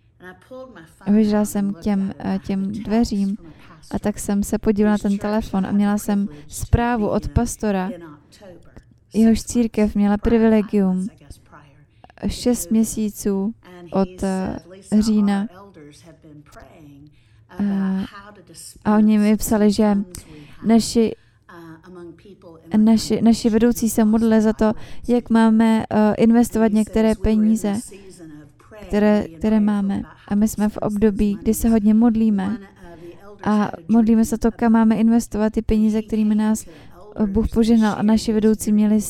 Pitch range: 195-225 Hz